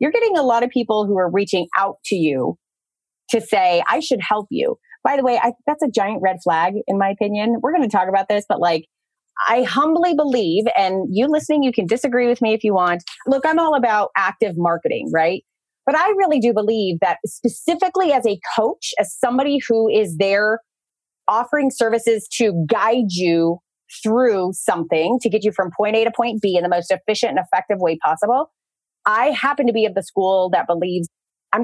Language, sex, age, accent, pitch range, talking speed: English, female, 30-49, American, 180-245 Hz, 205 wpm